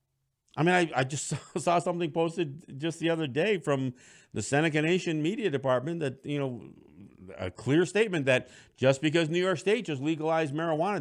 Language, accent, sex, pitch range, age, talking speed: English, American, male, 130-175 Hz, 50-69, 185 wpm